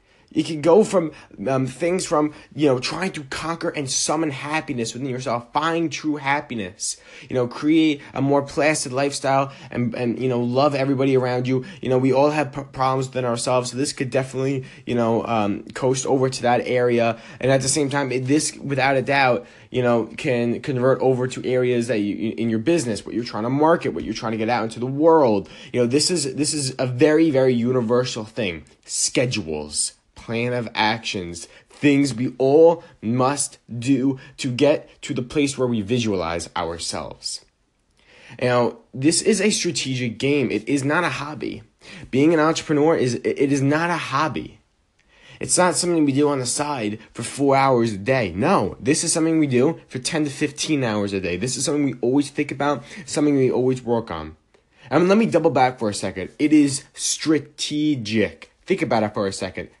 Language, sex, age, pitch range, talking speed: English, male, 20-39, 120-150 Hz, 200 wpm